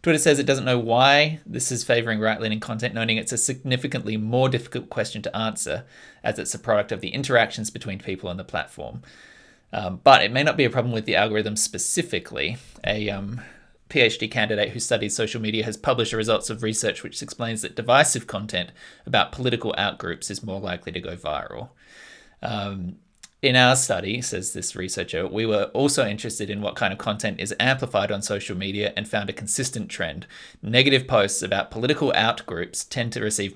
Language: English